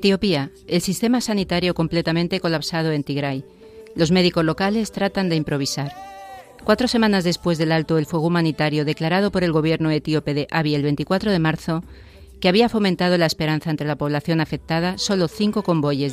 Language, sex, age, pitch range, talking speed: Spanish, female, 40-59, 155-185 Hz, 165 wpm